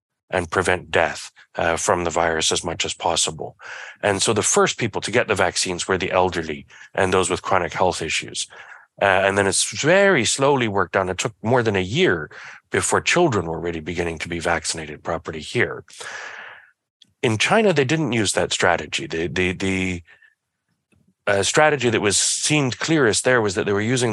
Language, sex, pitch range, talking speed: English, male, 95-115 Hz, 185 wpm